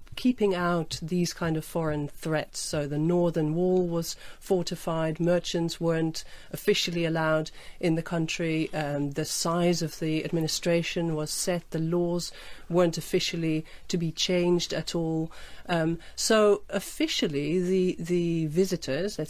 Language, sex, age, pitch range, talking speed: English, female, 40-59, 155-175 Hz, 145 wpm